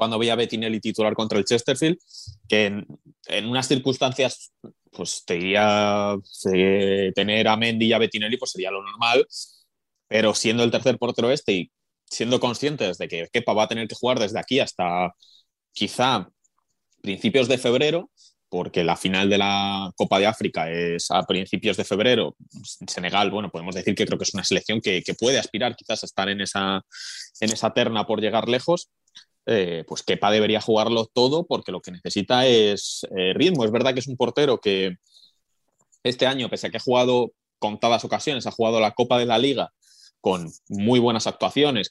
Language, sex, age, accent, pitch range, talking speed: Spanish, male, 20-39, Spanish, 105-120 Hz, 185 wpm